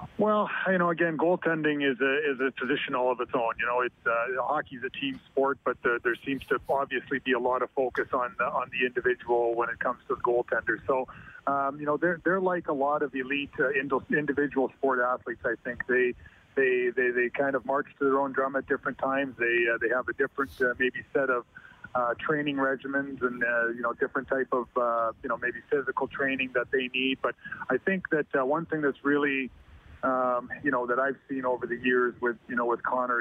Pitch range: 125-145 Hz